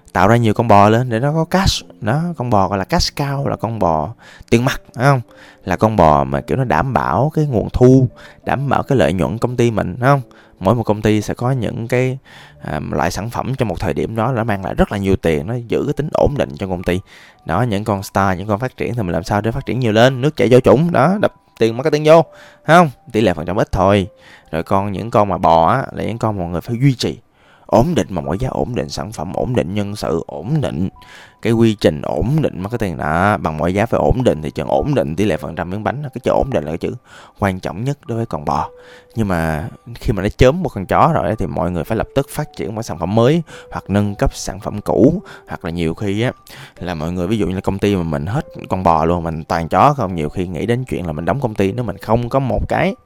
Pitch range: 90-120 Hz